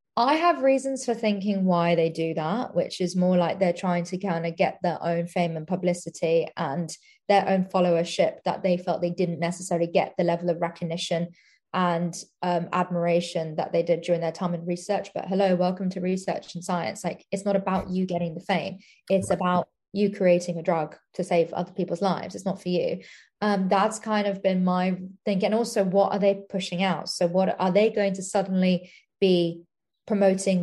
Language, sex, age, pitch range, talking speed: English, female, 20-39, 175-195 Hz, 200 wpm